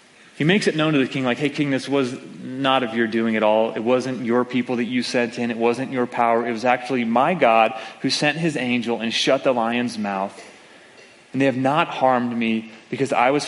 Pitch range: 115-135 Hz